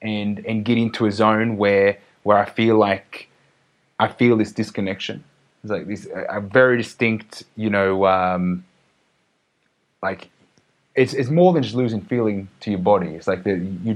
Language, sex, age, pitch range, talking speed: English, male, 20-39, 95-115 Hz, 170 wpm